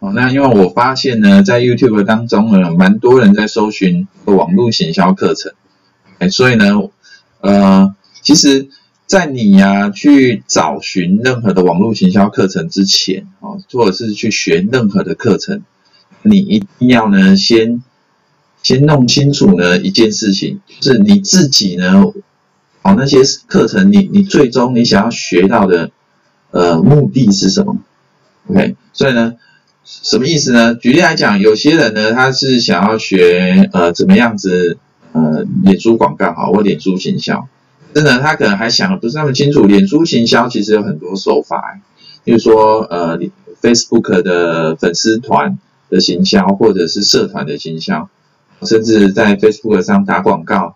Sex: male